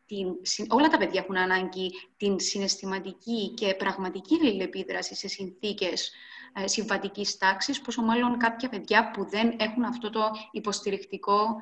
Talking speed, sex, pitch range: 130 wpm, female, 195-250 Hz